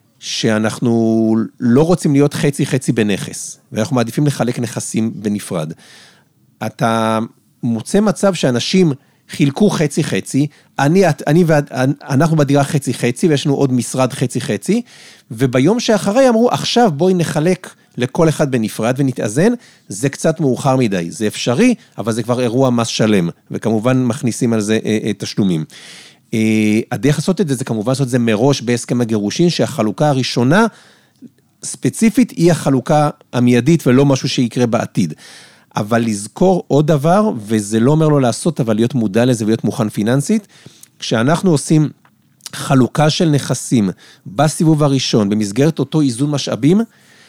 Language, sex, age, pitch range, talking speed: Hebrew, male, 40-59, 120-160 Hz, 135 wpm